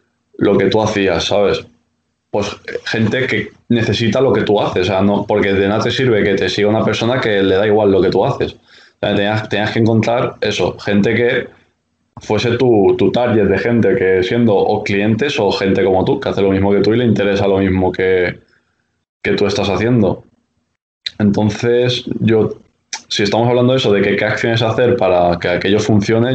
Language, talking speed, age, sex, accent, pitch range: Spanish, 205 wpm, 20-39, male, Spanish, 100-115 Hz